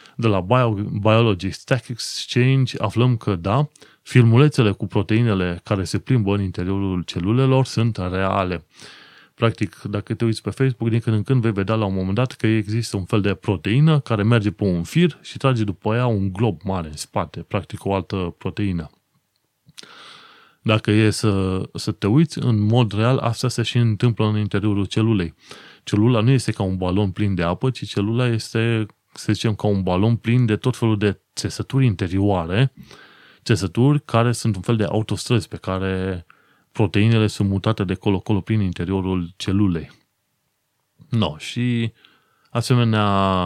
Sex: male